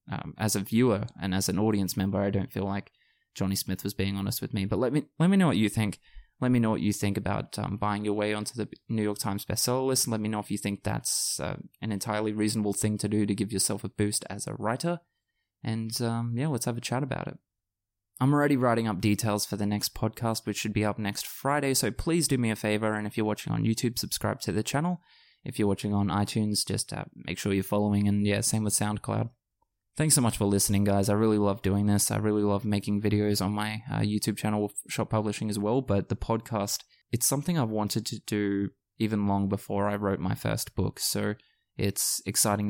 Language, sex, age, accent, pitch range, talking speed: English, male, 20-39, Australian, 100-115 Hz, 240 wpm